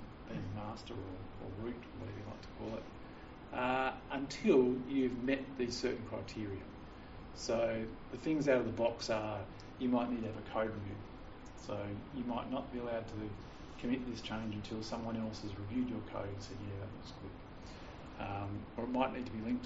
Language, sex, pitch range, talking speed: English, male, 105-125 Hz, 200 wpm